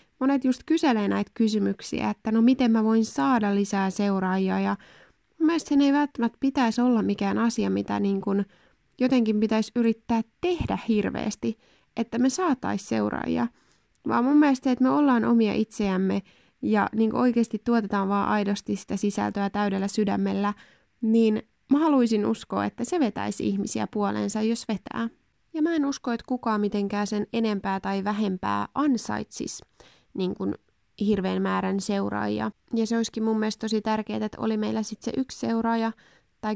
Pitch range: 200-230 Hz